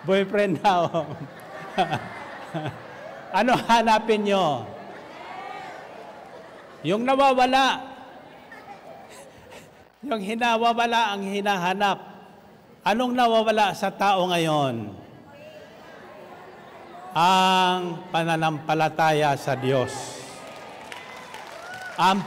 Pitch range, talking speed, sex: 180-205 Hz, 60 wpm, male